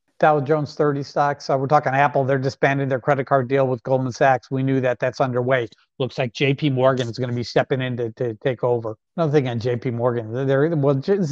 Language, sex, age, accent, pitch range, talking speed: English, male, 50-69, American, 120-140 Hz, 235 wpm